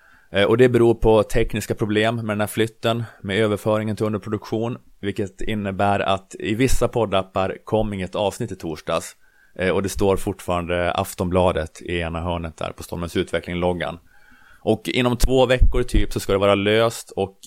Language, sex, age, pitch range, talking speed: Swedish, male, 30-49, 90-105 Hz, 165 wpm